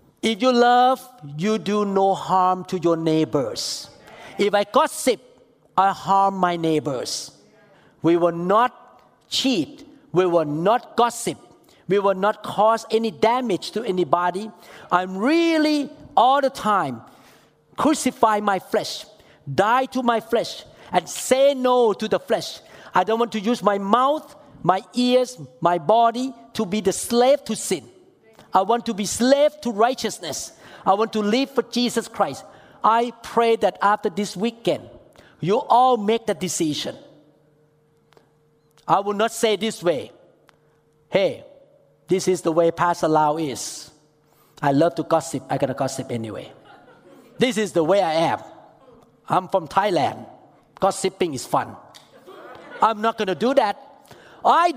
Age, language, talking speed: 50-69, English, 145 wpm